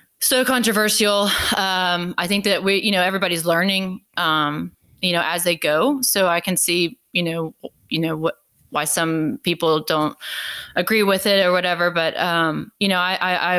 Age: 20-39